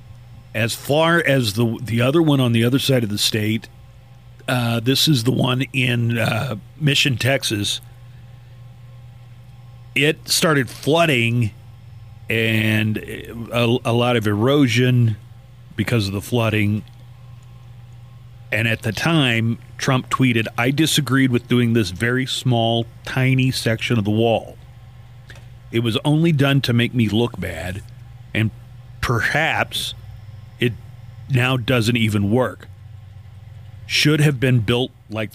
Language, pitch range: English, 115-125 Hz